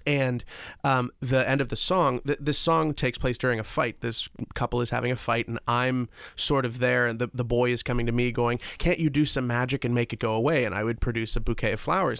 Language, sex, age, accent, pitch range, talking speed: English, male, 30-49, American, 120-150 Hz, 260 wpm